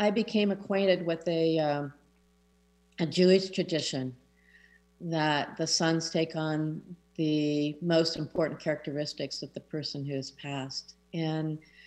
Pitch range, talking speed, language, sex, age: 140-175 Hz, 125 wpm, English, female, 50-69